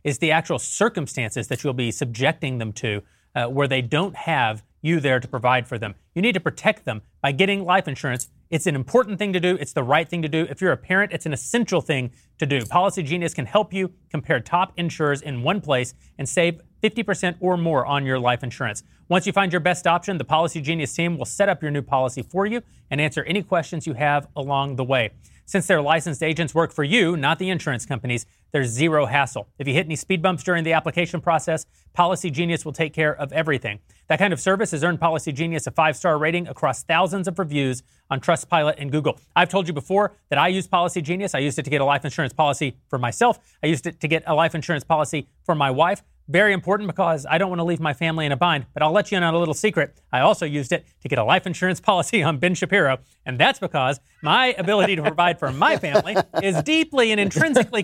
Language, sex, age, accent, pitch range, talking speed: English, male, 30-49, American, 145-185 Hz, 240 wpm